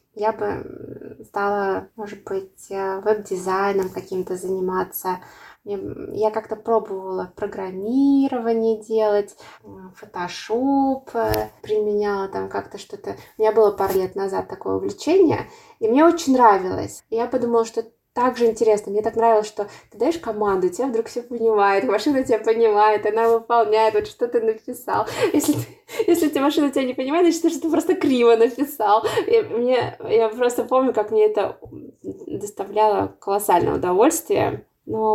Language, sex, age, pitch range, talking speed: Russian, female, 20-39, 205-300 Hz, 135 wpm